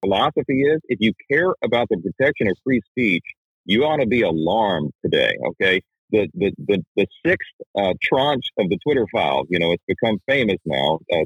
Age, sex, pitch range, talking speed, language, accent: 40-59, male, 95-125 Hz, 185 wpm, English, American